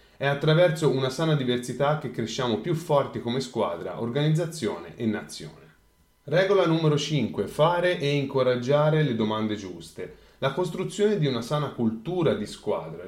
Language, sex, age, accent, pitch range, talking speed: Italian, male, 30-49, native, 110-155 Hz, 140 wpm